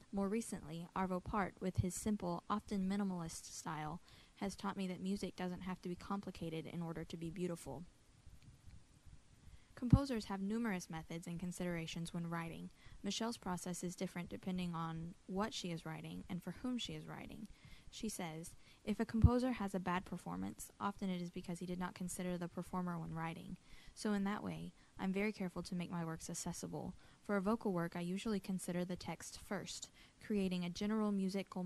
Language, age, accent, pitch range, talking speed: English, 10-29, American, 170-195 Hz, 180 wpm